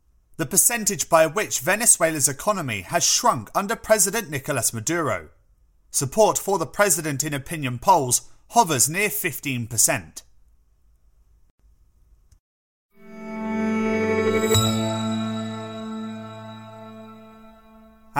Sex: male